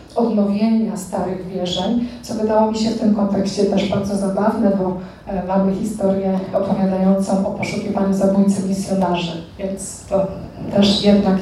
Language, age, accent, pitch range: Polish, 30-49, native, 195-225 Hz